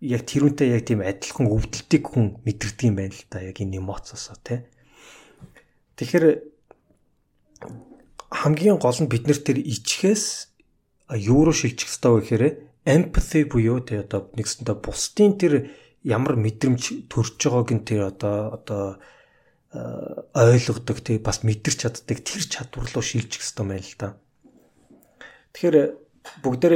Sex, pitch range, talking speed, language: male, 105-135 Hz, 130 wpm, English